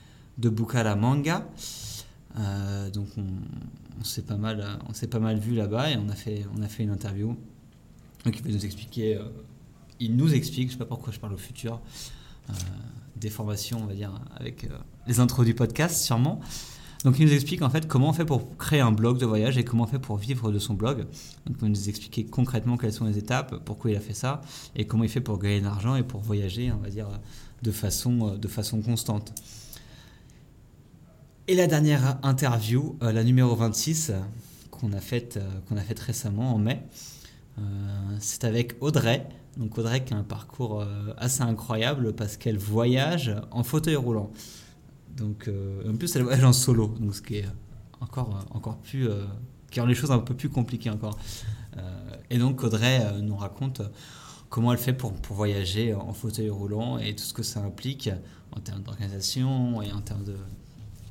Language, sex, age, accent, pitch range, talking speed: French, male, 30-49, French, 105-130 Hz, 200 wpm